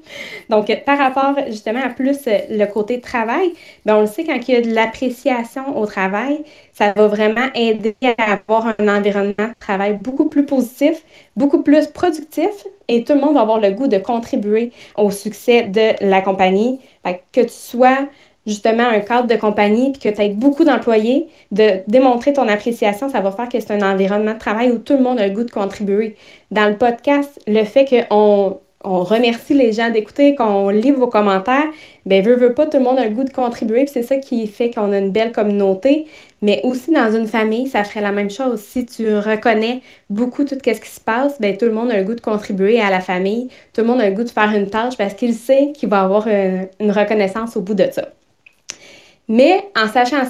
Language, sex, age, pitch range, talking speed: English, female, 20-39, 210-260 Hz, 215 wpm